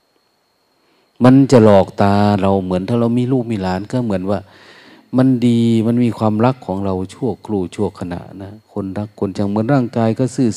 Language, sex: Thai, male